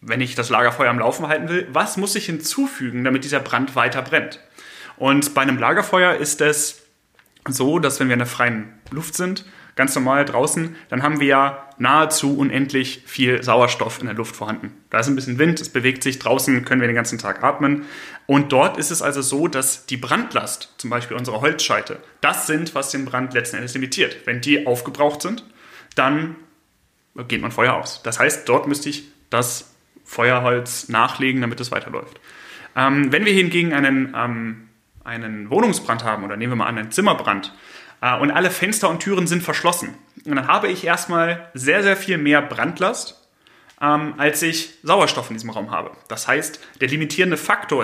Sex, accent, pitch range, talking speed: male, German, 125-155 Hz, 185 wpm